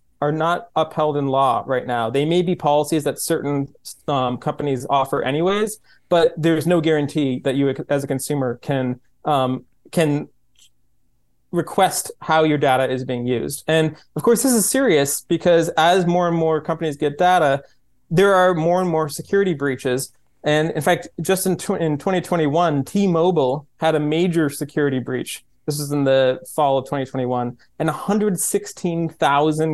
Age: 30-49